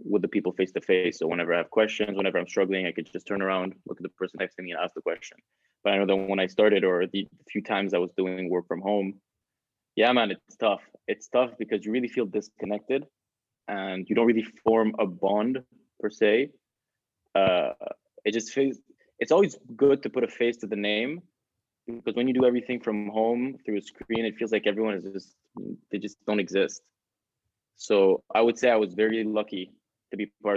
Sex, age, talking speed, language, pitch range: male, 20-39, 220 wpm, English, 95-120 Hz